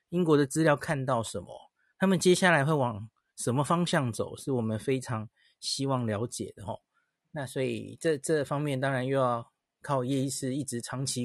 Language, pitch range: Chinese, 120-160 Hz